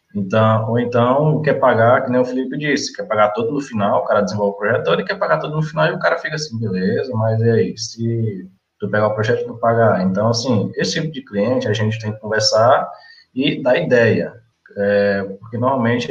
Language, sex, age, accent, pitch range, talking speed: Portuguese, male, 20-39, Brazilian, 110-135 Hz, 225 wpm